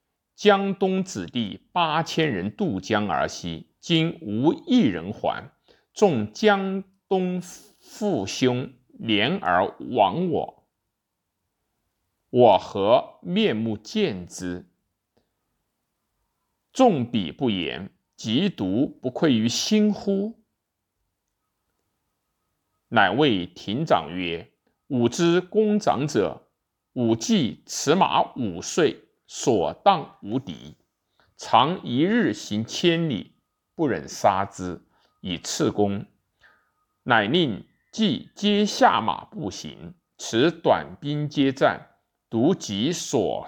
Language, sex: Chinese, male